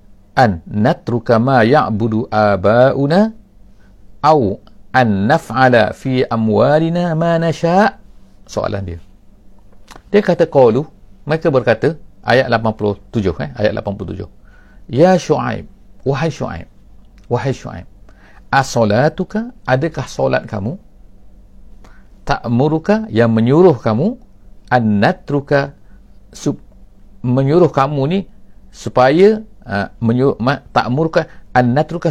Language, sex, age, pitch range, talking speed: English, male, 50-69, 100-130 Hz, 85 wpm